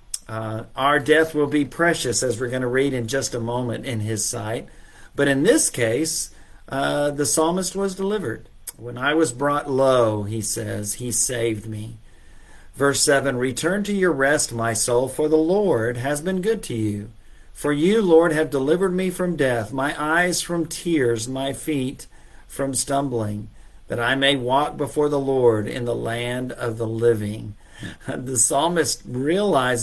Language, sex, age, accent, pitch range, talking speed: English, male, 50-69, American, 115-145 Hz, 170 wpm